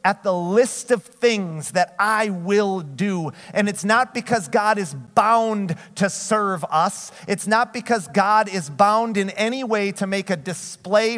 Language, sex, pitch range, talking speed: English, male, 145-215 Hz, 170 wpm